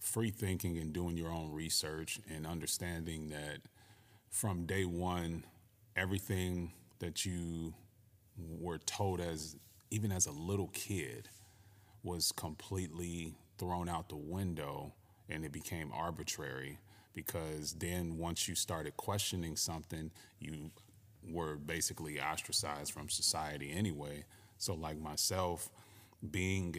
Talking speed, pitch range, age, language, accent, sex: 115 wpm, 80-105 Hz, 30-49, English, American, male